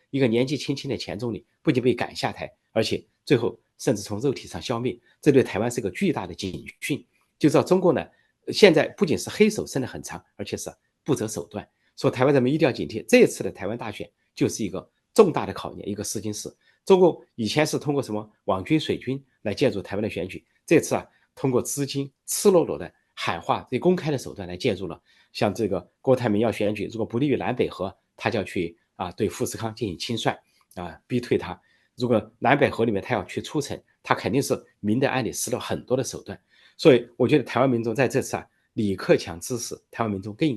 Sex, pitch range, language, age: male, 105-140 Hz, Chinese, 30-49